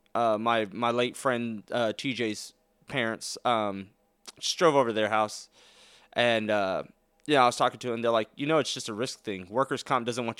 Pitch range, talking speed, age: 110-130 Hz, 220 wpm, 20-39